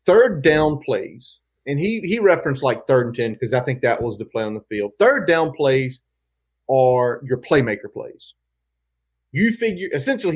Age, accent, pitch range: 30-49, American, 110-155 Hz